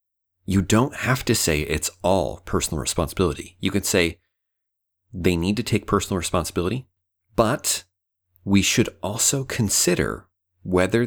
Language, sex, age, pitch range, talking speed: English, male, 30-49, 85-105 Hz, 130 wpm